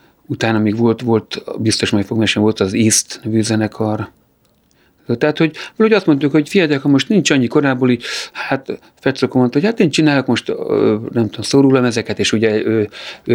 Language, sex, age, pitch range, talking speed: Hungarian, male, 40-59, 110-130 Hz, 195 wpm